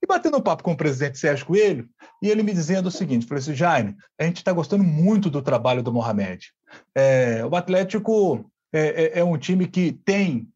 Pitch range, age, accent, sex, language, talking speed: 150-220 Hz, 40-59, Brazilian, male, Portuguese, 215 wpm